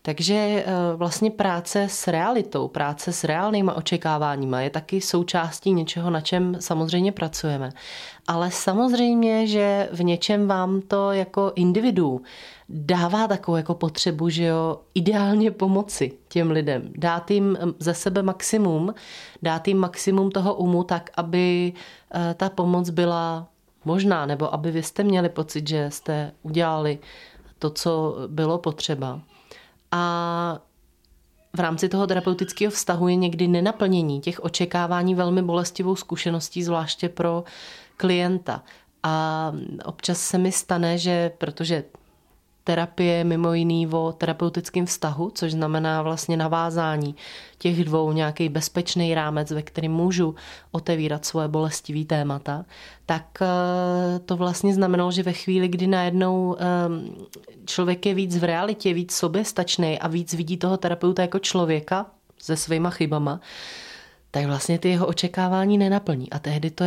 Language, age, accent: Czech, 30-49, native